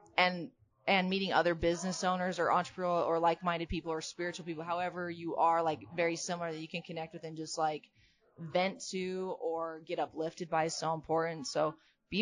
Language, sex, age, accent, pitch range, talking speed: English, female, 20-39, American, 160-190 Hz, 190 wpm